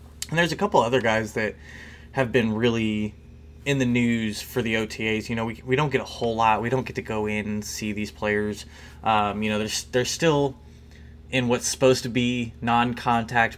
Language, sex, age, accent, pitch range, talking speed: English, male, 20-39, American, 105-125 Hz, 210 wpm